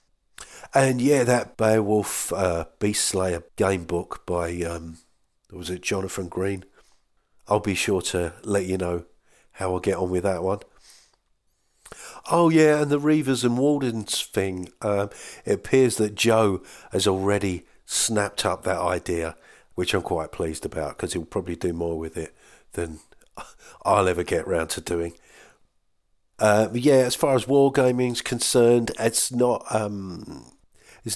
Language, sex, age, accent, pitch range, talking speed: English, male, 50-69, British, 85-110 Hz, 150 wpm